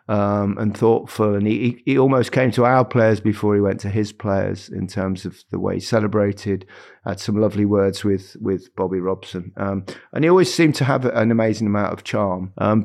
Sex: male